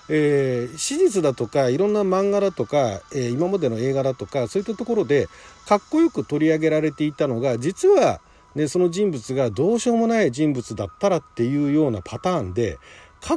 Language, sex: Japanese, male